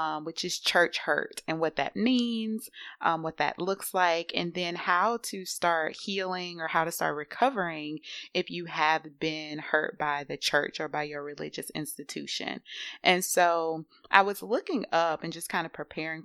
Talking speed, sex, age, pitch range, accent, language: 180 wpm, female, 20-39, 155-180 Hz, American, English